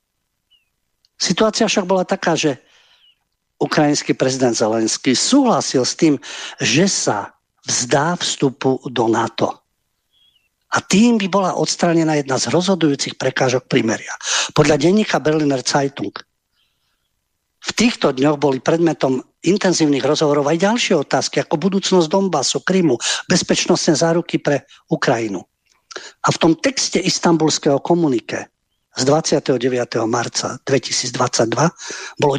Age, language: 50-69, Slovak